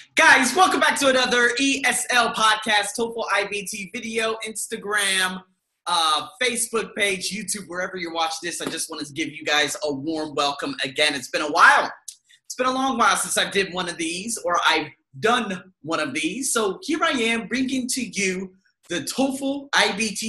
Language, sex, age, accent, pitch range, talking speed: English, male, 30-49, American, 165-250 Hz, 180 wpm